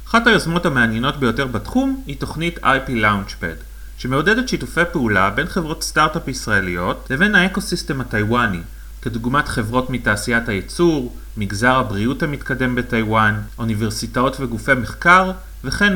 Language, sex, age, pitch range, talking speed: Hebrew, male, 30-49, 105-150 Hz, 115 wpm